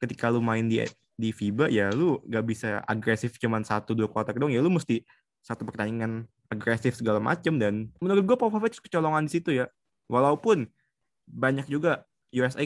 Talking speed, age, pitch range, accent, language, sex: 170 wpm, 20-39, 115-135 Hz, native, Indonesian, male